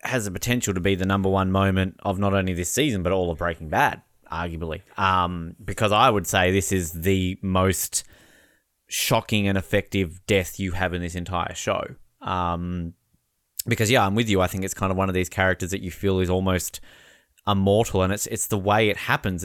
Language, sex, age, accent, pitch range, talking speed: English, male, 20-39, Australian, 95-125 Hz, 210 wpm